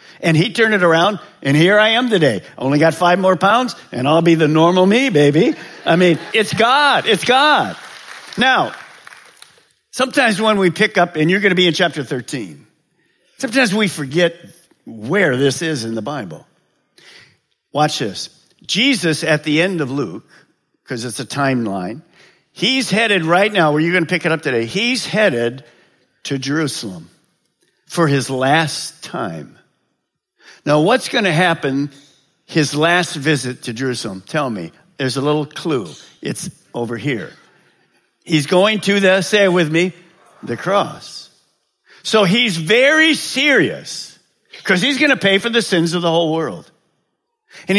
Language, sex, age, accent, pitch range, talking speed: English, male, 50-69, American, 150-215 Hz, 160 wpm